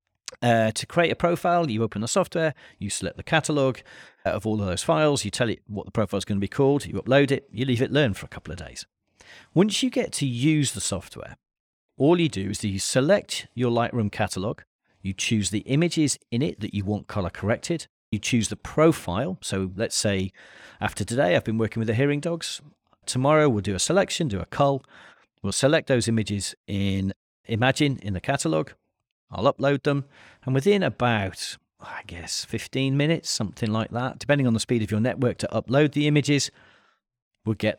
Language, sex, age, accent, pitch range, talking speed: English, male, 40-59, British, 105-140 Hz, 205 wpm